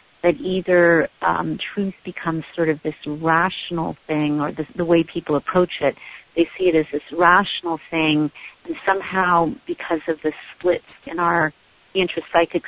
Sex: female